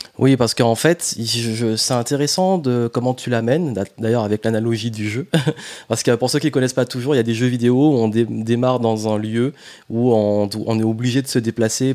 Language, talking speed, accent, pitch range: French, 240 wpm, French, 110-130 Hz